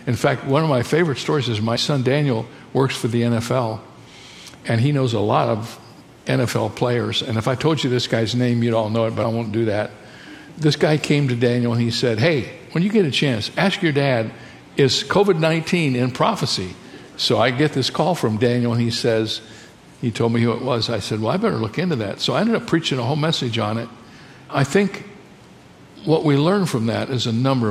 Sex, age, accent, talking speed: male, 60-79, American, 225 wpm